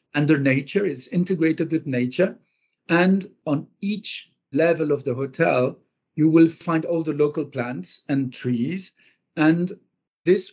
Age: 50-69